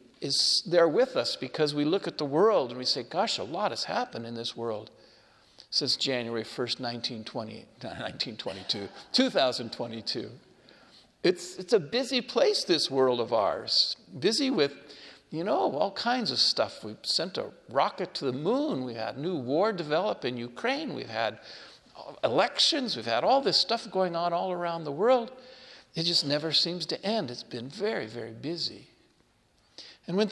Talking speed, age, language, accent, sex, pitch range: 170 wpm, 50-69, English, American, male, 145-210 Hz